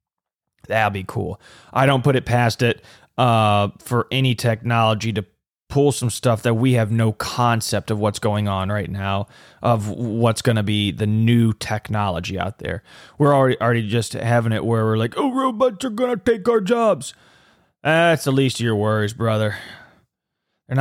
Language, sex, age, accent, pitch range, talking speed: English, male, 20-39, American, 110-125 Hz, 185 wpm